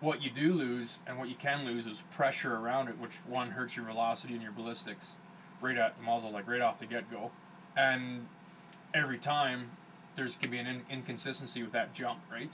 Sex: male